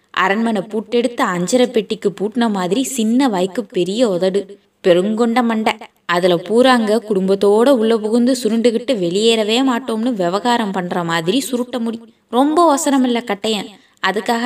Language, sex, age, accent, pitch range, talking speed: Tamil, female, 20-39, native, 185-235 Hz, 120 wpm